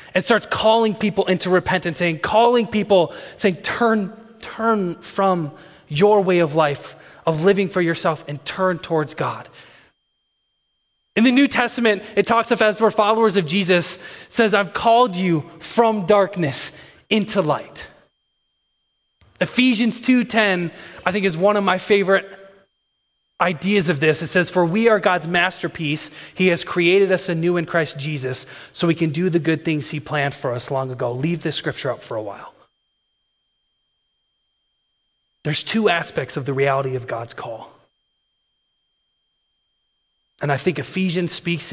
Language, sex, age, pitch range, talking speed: English, male, 20-39, 145-200 Hz, 150 wpm